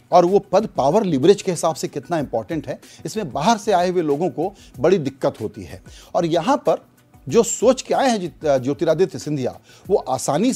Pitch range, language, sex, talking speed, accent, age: 150-220 Hz, Hindi, male, 200 wpm, native, 40-59